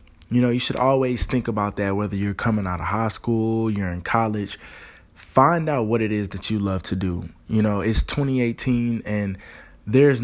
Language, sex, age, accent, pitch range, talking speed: English, male, 20-39, American, 95-115 Hz, 205 wpm